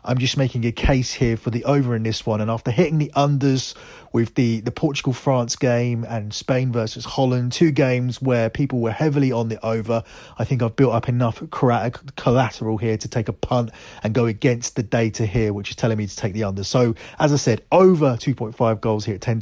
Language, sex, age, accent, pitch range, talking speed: English, male, 30-49, British, 110-135 Hz, 220 wpm